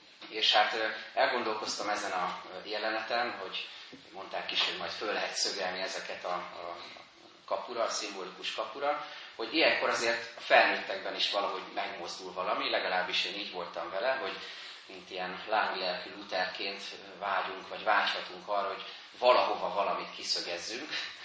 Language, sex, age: Hungarian, male, 30-49